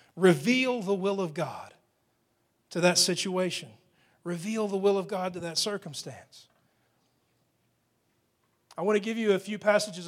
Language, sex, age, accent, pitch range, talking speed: English, male, 40-59, American, 160-210 Hz, 145 wpm